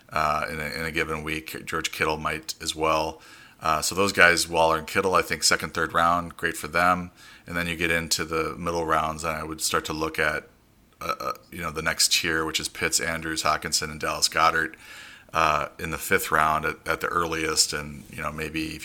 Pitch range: 75-85 Hz